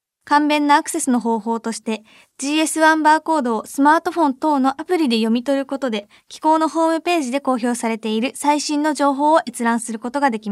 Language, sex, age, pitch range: Japanese, female, 20-39, 240-300 Hz